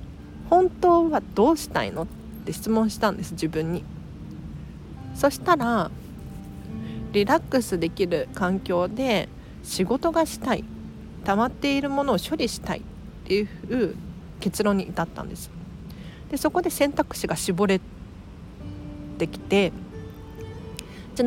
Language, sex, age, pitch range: Japanese, female, 40-59, 155-240 Hz